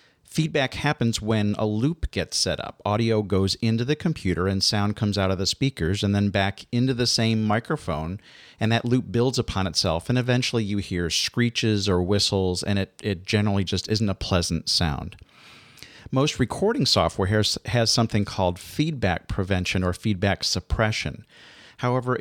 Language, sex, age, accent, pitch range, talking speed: English, male, 40-59, American, 95-115 Hz, 170 wpm